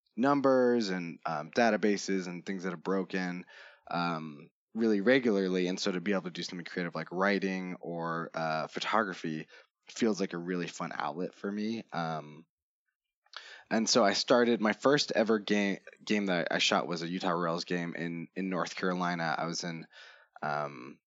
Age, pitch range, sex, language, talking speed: 20-39, 85-105 Hz, male, English, 170 wpm